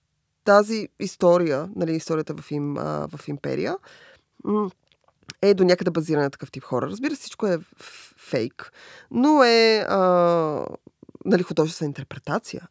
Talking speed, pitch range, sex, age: 130 wpm, 155-205 Hz, female, 20-39